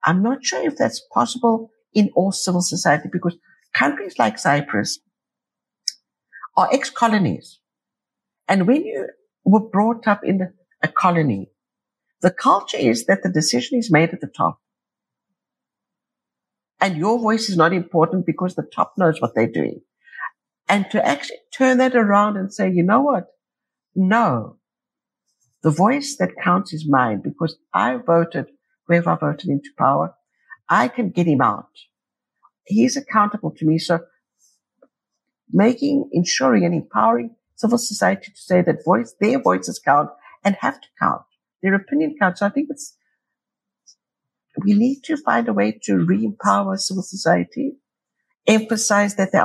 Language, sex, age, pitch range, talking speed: English, female, 60-79, 170-240 Hz, 150 wpm